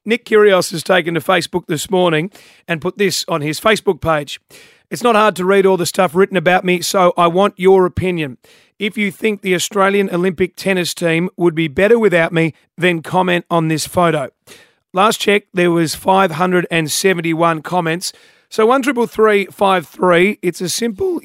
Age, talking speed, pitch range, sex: 40-59, 180 wpm, 175-200 Hz, male